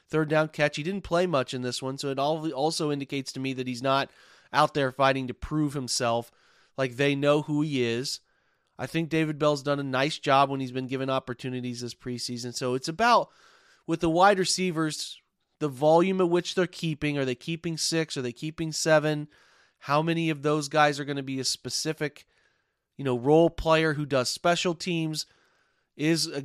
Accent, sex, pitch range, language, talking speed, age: American, male, 135-165 Hz, English, 200 wpm, 30-49